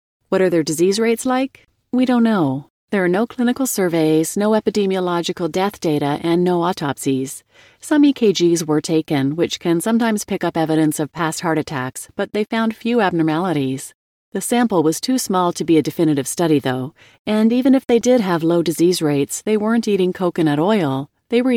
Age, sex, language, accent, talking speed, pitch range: 40-59, female, English, American, 185 wpm, 160-220 Hz